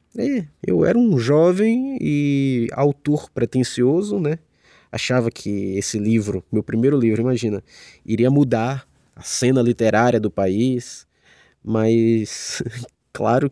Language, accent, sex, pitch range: Portuguese, Brazilian, male, 110-150 Hz